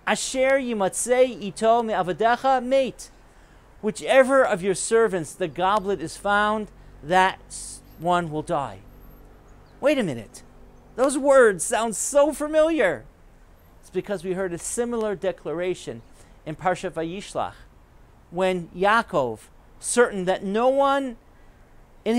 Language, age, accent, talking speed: English, 40-59, American, 115 wpm